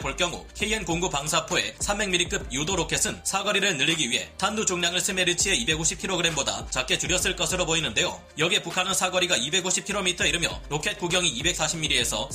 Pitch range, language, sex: 160-200 Hz, Korean, male